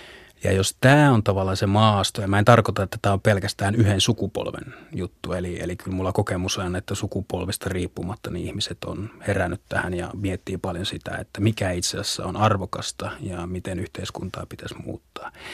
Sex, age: male, 30-49